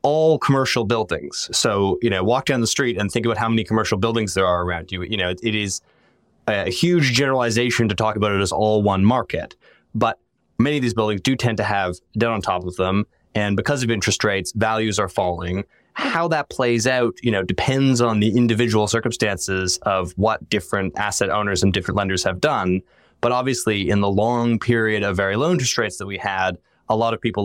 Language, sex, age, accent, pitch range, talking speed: English, male, 20-39, American, 95-120 Hz, 215 wpm